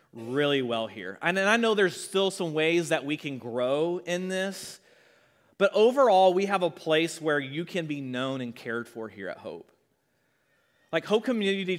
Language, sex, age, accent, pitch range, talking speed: English, male, 30-49, American, 145-185 Hz, 185 wpm